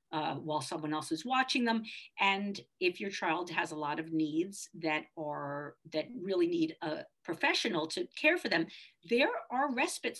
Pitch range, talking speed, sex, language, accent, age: 165-245 Hz, 175 wpm, female, English, American, 50-69